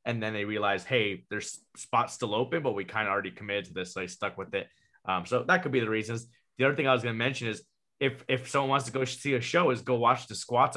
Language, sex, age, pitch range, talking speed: English, male, 20-39, 110-130 Hz, 290 wpm